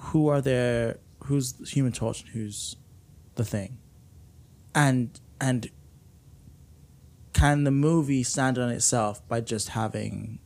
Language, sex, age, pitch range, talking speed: English, male, 20-39, 110-130 Hz, 125 wpm